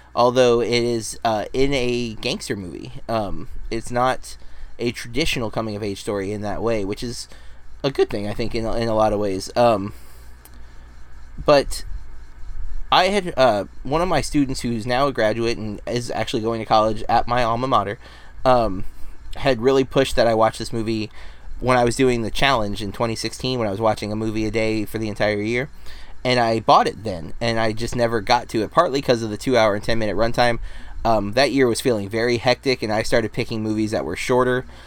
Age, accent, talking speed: 20-39, American, 205 wpm